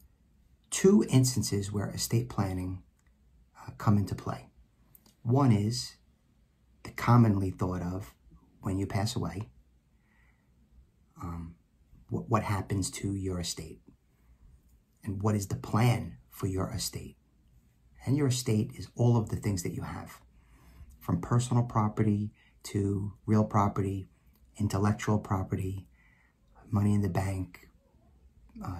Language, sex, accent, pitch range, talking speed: English, male, American, 70-110 Hz, 120 wpm